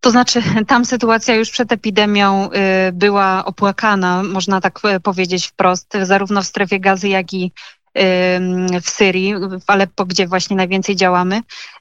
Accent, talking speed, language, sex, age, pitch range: native, 135 wpm, Polish, female, 20-39, 195-220 Hz